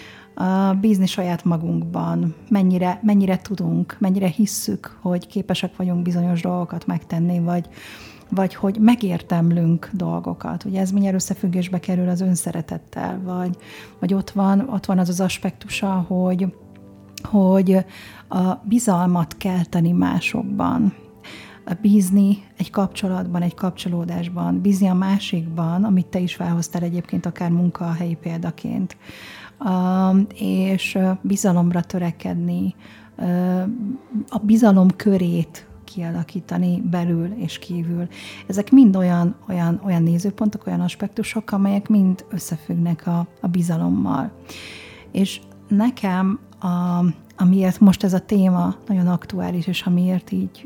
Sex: female